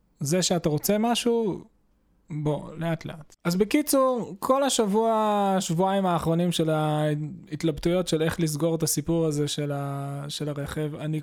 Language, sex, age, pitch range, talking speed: Hebrew, male, 20-39, 155-200 Hz, 130 wpm